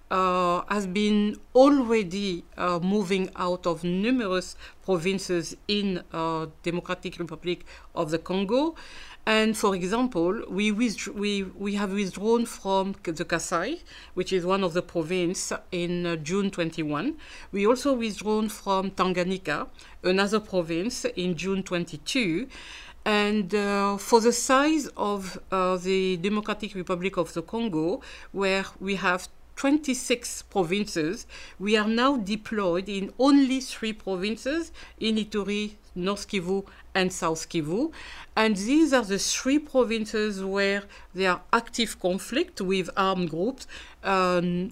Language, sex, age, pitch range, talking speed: English, female, 50-69, 180-225 Hz, 130 wpm